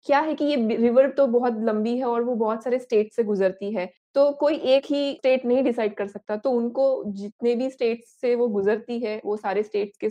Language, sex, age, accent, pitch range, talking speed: Hindi, female, 20-39, native, 205-260 Hz, 230 wpm